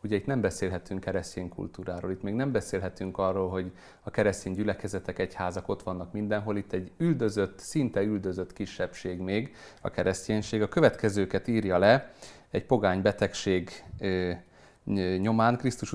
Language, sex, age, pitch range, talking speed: Hungarian, male, 30-49, 95-115 Hz, 140 wpm